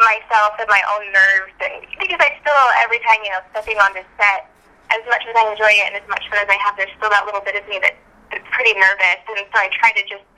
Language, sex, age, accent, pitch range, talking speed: English, female, 10-29, American, 200-230 Hz, 270 wpm